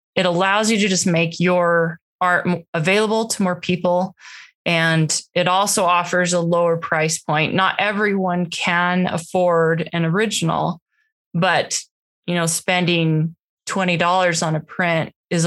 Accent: American